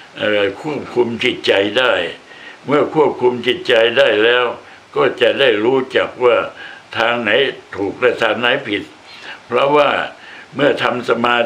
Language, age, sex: Thai, 60-79, male